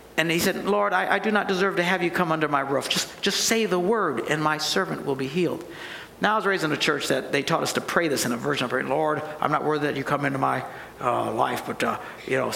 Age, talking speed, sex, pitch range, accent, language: 60-79, 290 wpm, male, 165-275 Hz, American, English